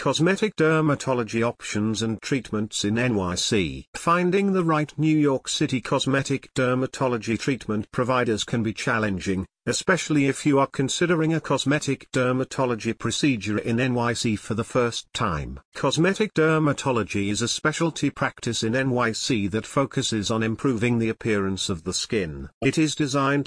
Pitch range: 110-140 Hz